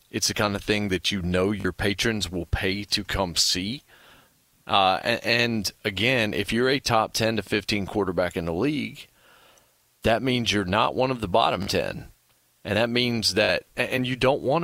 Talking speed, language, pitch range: 195 wpm, English, 100-125 Hz